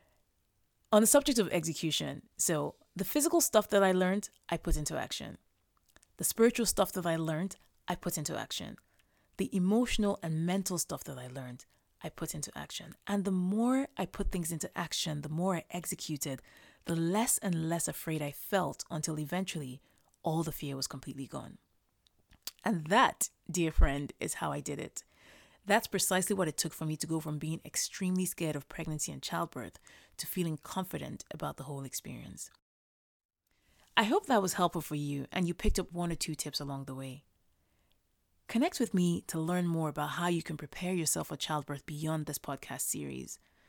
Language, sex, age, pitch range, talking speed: English, female, 30-49, 145-185 Hz, 185 wpm